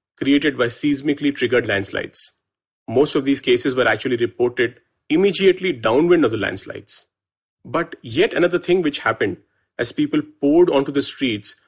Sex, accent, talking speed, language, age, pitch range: male, Indian, 150 wpm, English, 30-49, 105-140 Hz